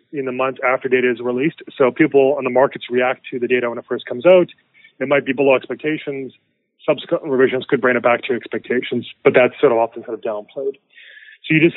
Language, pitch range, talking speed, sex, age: English, 125-150 Hz, 235 wpm, male, 30-49